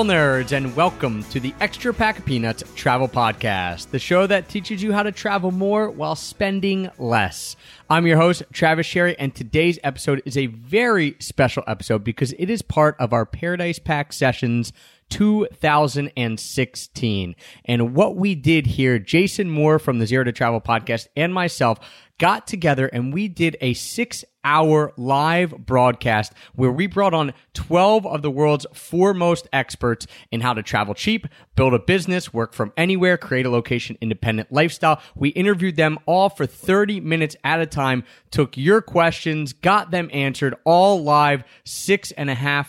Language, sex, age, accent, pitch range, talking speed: English, male, 30-49, American, 120-165 Hz, 165 wpm